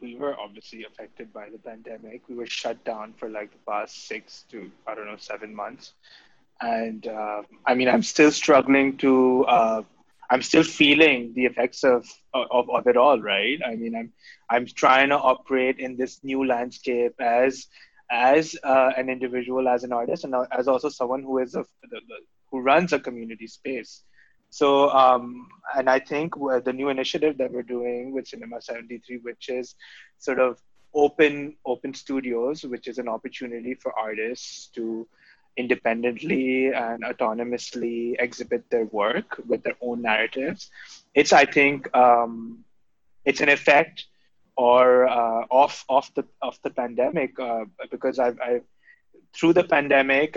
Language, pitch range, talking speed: English, 120-135 Hz, 160 wpm